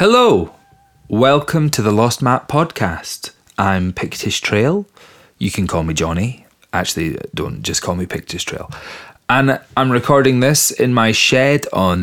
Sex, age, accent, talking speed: male, 30-49, British, 150 wpm